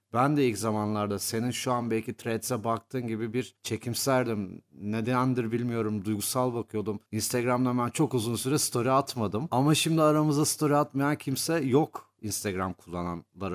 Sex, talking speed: male, 150 wpm